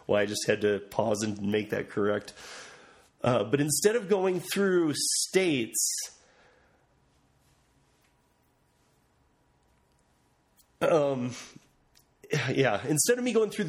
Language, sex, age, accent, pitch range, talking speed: English, male, 30-49, American, 120-165 Hz, 105 wpm